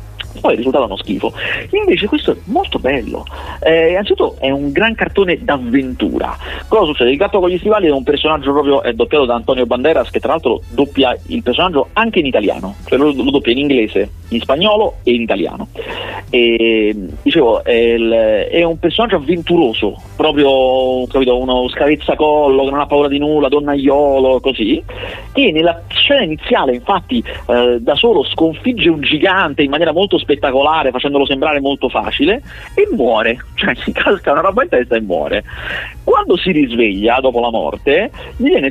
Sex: male